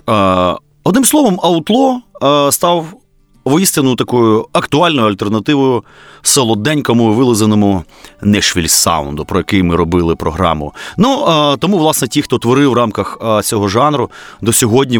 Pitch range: 100-140 Hz